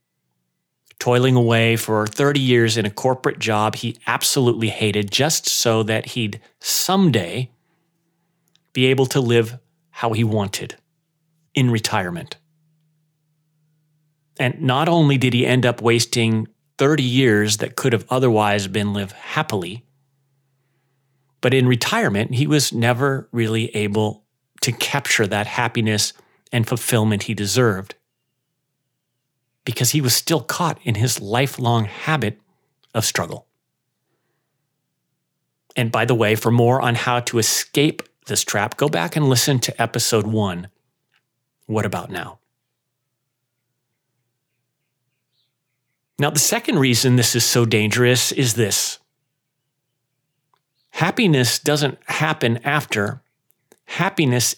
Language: English